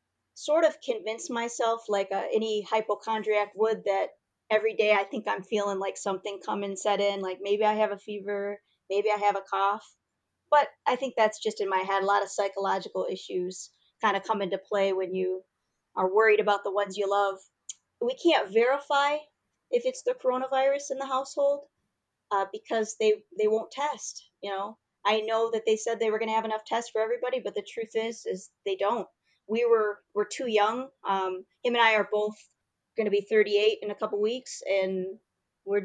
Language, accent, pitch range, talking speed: English, American, 200-235 Hz, 205 wpm